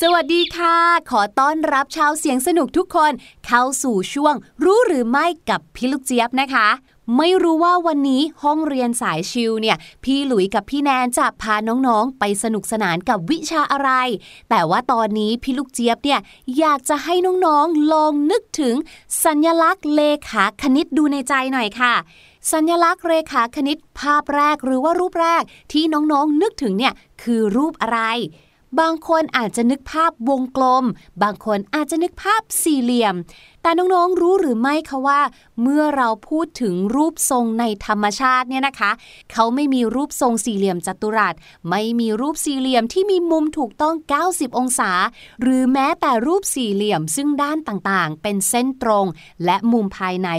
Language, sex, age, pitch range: Thai, female, 20-39, 225-310 Hz